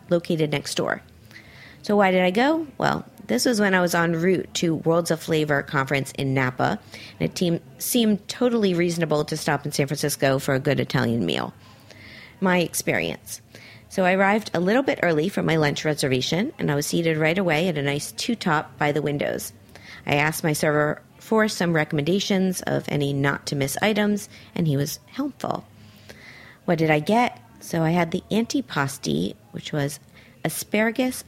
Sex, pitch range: female, 145-190 Hz